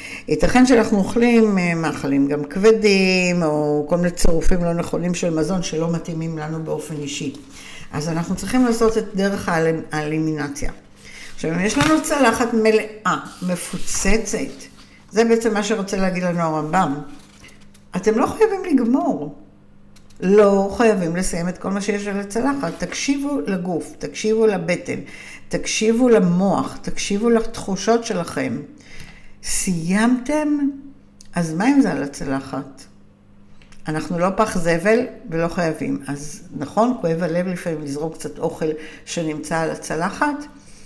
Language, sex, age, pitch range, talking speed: Hebrew, female, 60-79, 155-220 Hz, 130 wpm